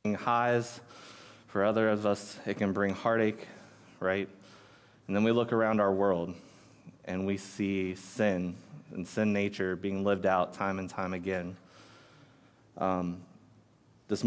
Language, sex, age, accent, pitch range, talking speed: English, male, 20-39, American, 95-110 Hz, 140 wpm